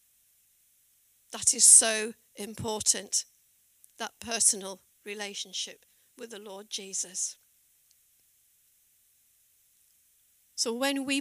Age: 50-69